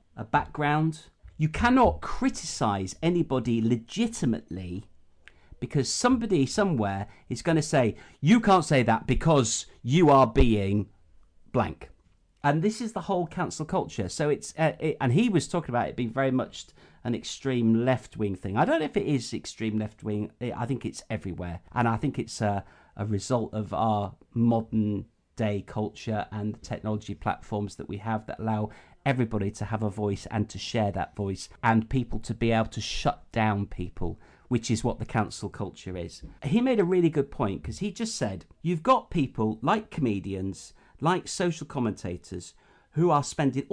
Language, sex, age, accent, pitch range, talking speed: English, male, 50-69, British, 100-145 Hz, 175 wpm